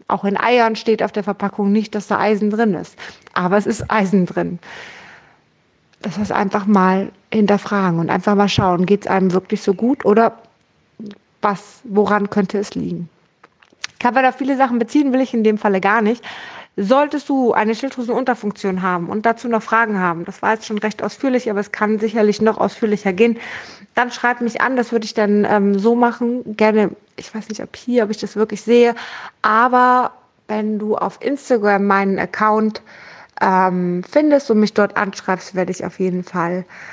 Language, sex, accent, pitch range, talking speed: German, female, German, 195-235 Hz, 185 wpm